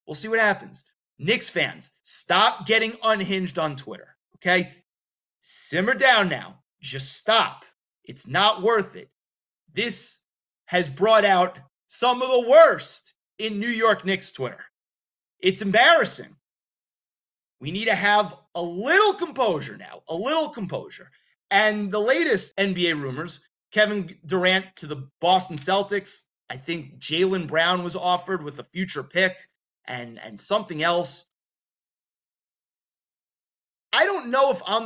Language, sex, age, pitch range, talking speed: English, male, 30-49, 170-220 Hz, 135 wpm